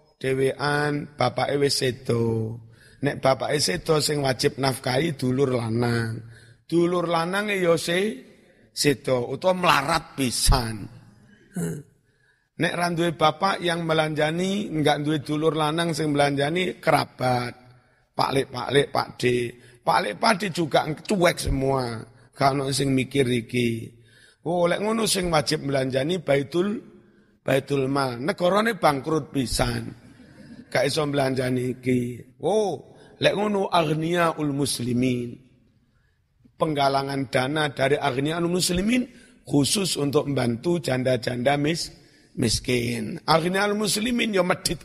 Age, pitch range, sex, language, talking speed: 50-69, 125-165 Hz, male, Indonesian, 100 wpm